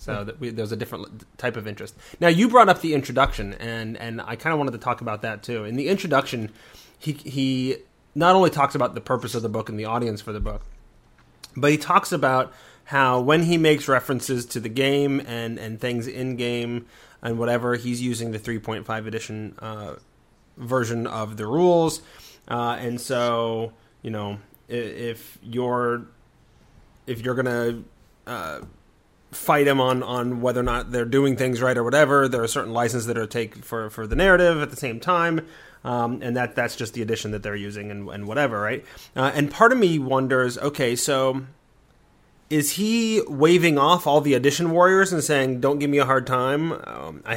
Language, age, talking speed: English, 30-49, 195 wpm